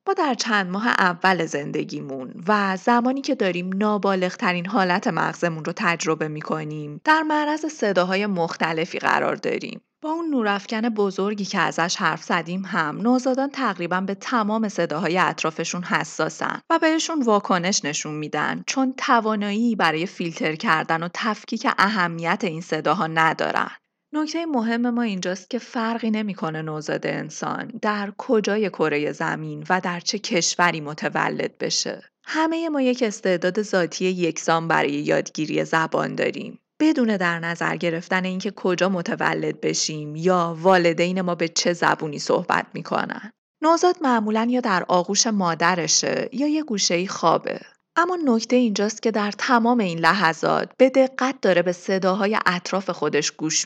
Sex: female